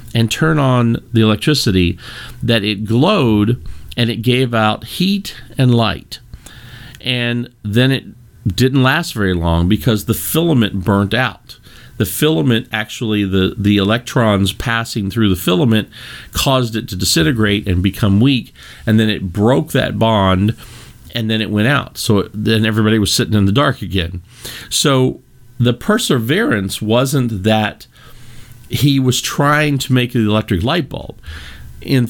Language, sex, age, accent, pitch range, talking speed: English, male, 50-69, American, 100-125 Hz, 150 wpm